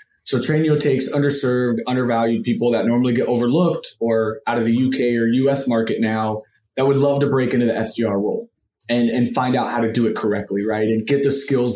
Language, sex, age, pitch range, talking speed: English, male, 20-39, 115-140 Hz, 215 wpm